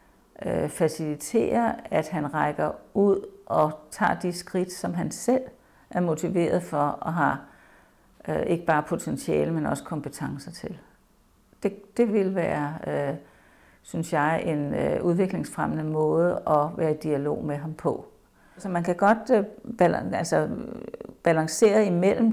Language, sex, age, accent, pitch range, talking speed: Danish, female, 60-79, native, 150-185 Hz, 125 wpm